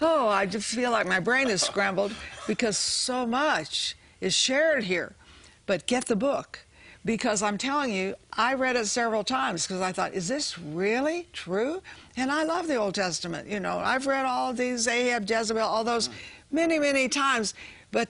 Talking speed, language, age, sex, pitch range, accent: 180 wpm, English, 60-79, female, 185-250 Hz, American